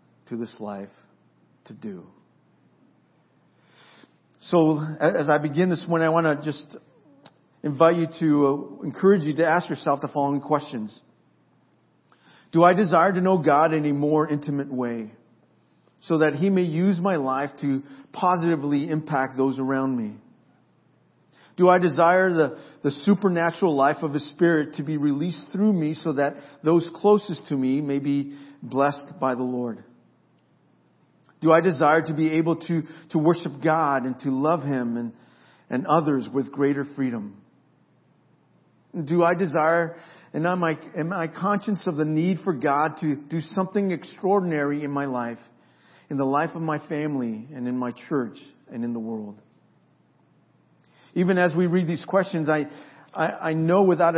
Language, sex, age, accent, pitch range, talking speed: English, male, 40-59, American, 140-170 Hz, 160 wpm